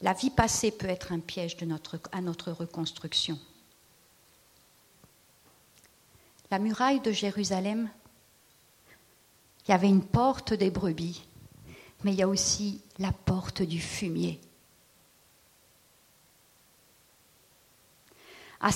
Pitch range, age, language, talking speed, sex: 220-320 Hz, 50-69, French, 105 wpm, female